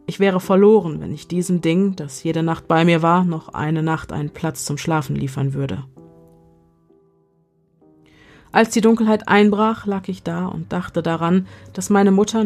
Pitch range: 145-190 Hz